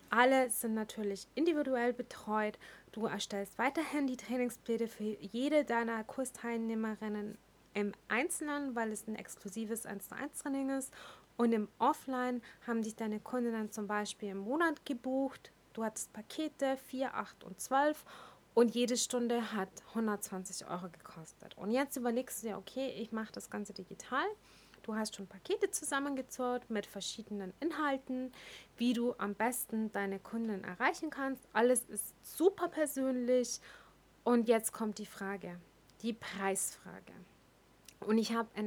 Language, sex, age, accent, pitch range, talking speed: German, female, 30-49, German, 210-265 Hz, 145 wpm